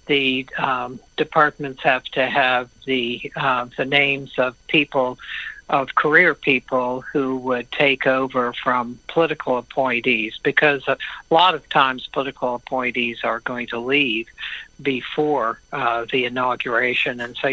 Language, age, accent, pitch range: English, 60-79, American, 130-150 Hz